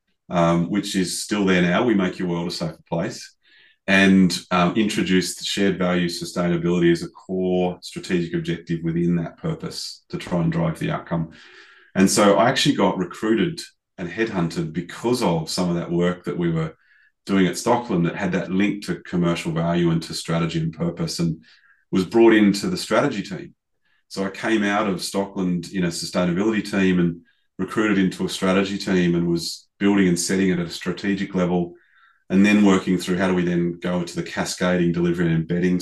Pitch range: 85-100 Hz